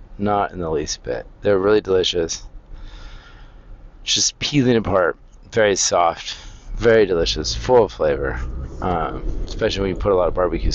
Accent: American